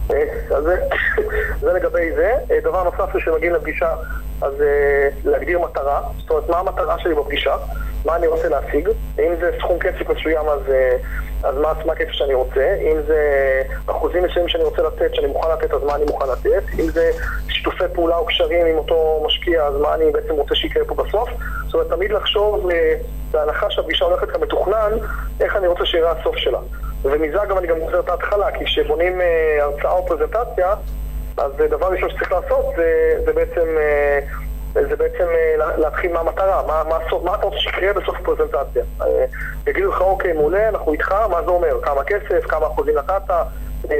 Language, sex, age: English, male, 30-49